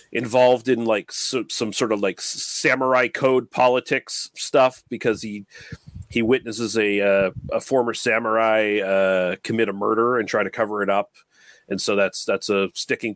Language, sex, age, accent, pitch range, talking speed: English, male, 30-49, American, 105-125 Hz, 165 wpm